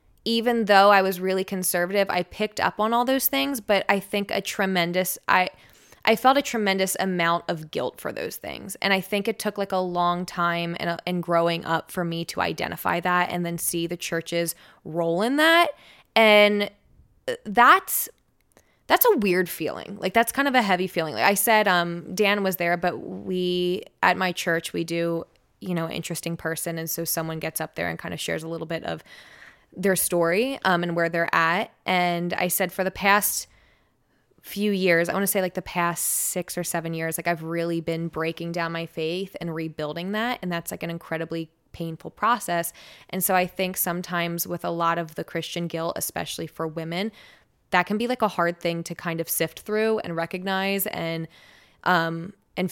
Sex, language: female, English